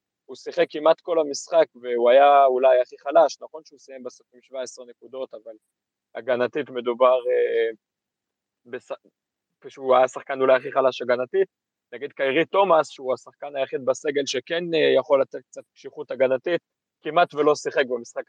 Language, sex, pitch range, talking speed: Hebrew, male, 135-180 Hz, 150 wpm